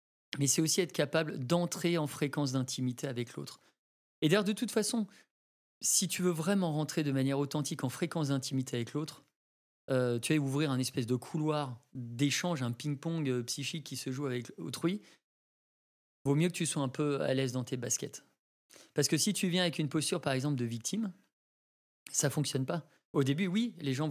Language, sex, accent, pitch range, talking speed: French, male, French, 130-165 Hz, 195 wpm